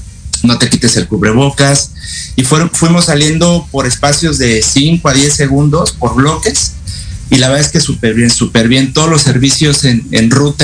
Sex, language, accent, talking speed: male, Spanish, Mexican, 175 wpm